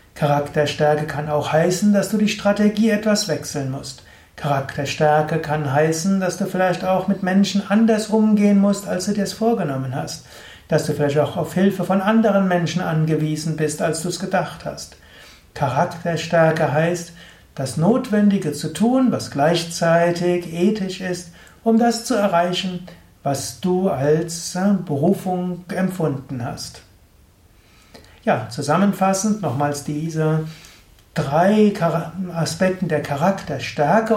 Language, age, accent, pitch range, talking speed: German, 60-79, German, 150-195 Hz, 130 wpm